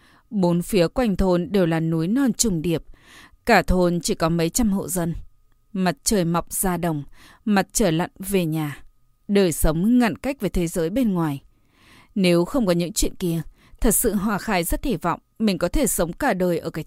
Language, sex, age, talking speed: Vietnamese, female, 20-39, 205 wpm